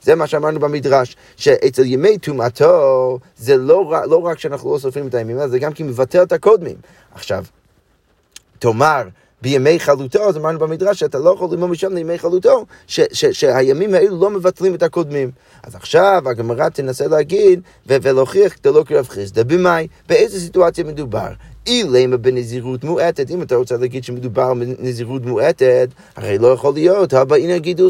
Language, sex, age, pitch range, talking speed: Hebrew, male, 30-49, 130-220 Hz, 170 wpm